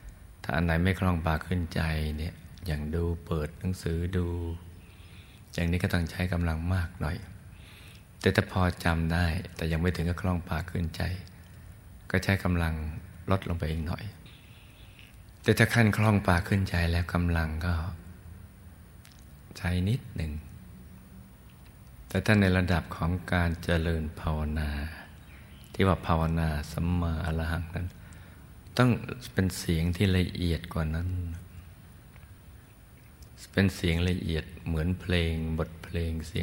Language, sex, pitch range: Thai, male, 85-95 Hz